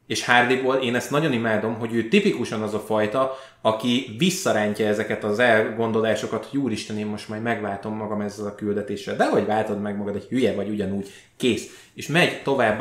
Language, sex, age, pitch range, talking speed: Hungarian, male, 20-39, 105-125 Hz, 185 wpm